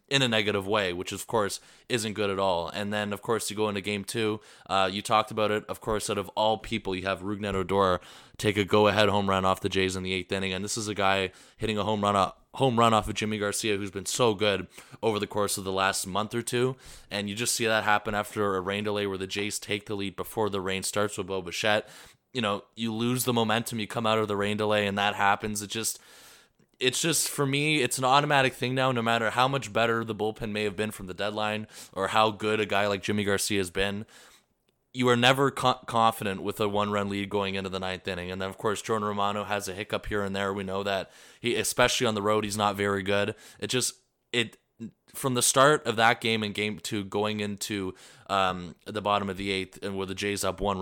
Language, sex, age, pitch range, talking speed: English, male, 20-39, 100-110 Hz, 250 wpm